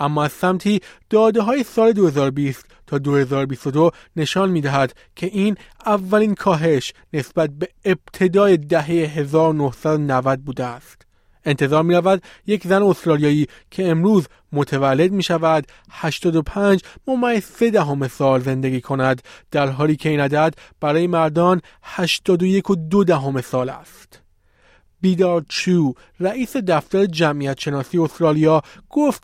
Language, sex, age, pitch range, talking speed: Persian, male, 30-49, 145-190 Hz, 120 wpm